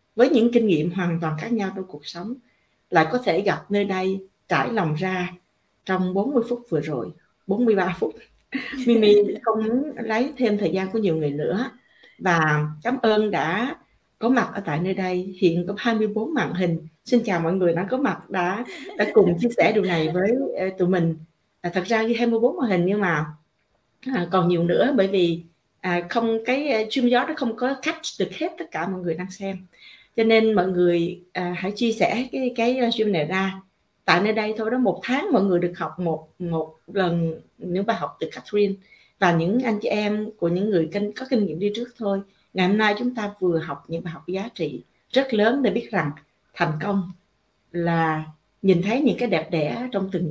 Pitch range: 170-225 Hz